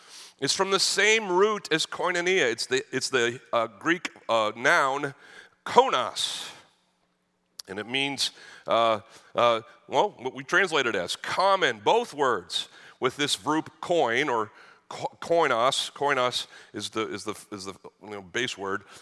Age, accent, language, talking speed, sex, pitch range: 40-59, American, English, 150 wpm, male, 125-170 Hz